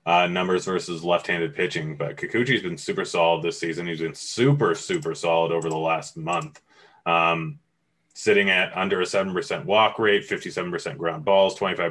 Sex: male